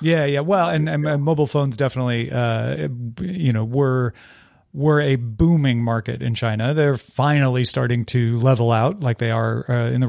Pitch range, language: 125-180 Hz, English